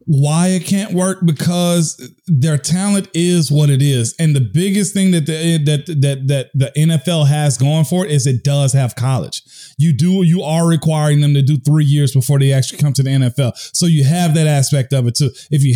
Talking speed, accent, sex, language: 220 wpm, American, male, English